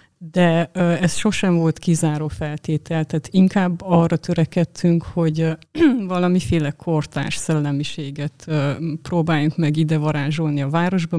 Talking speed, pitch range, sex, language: 105 wpm, 155-175 Hz, female, Hungarian